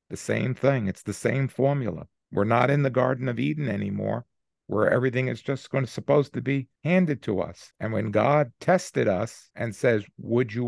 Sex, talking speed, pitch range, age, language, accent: male, 200 wpm, 115-140 Hz, 50-69, English, American